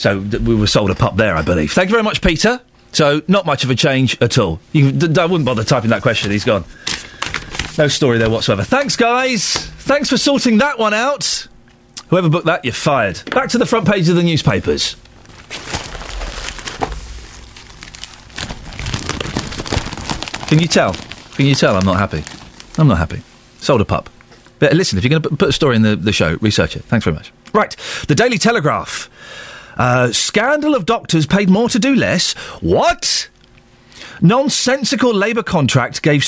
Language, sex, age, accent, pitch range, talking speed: English, male, 40-59, British, 125-205 Hz, 175 wpm